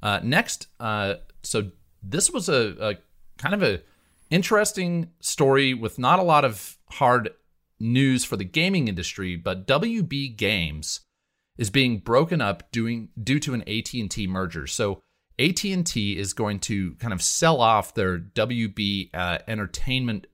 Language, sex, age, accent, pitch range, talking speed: English, male, 30-49, American, 85-120 Hz, 160 wpm